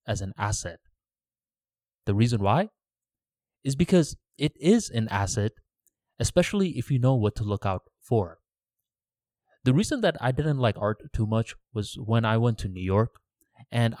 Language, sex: English, male